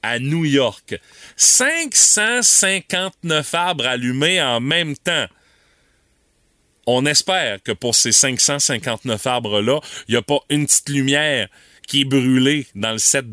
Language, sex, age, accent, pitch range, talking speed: French, male, 30-49, Canadian, 125-170 Hz, 130 wpm